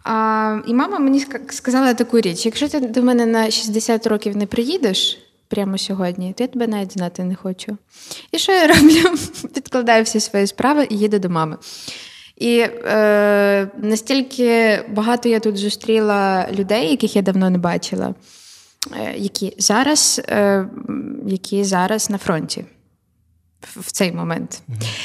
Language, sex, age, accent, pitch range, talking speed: Ukrainian, female, 20-39, native, 195-230 Hz, 135 wpm